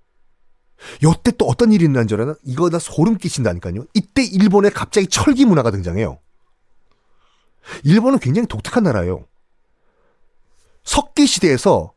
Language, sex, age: Korean, male, 40-59